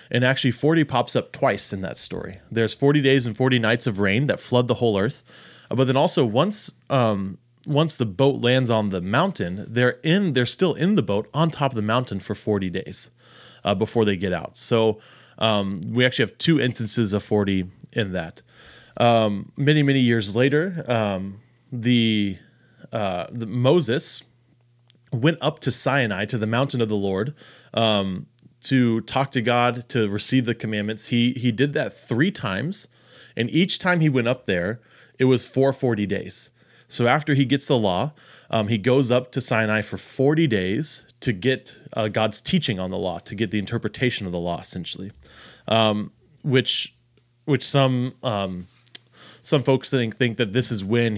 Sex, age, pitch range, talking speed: male, 20-39, 105-135 Hz, 180 wpm